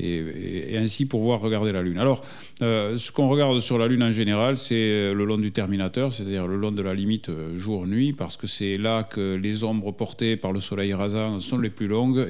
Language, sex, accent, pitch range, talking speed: French, male, French, 100-120 Hz, 220 wpm